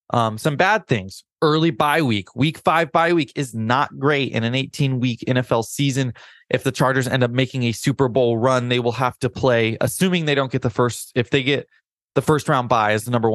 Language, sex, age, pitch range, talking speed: English, male, 20-39, 110-140 Hz, 225 wpm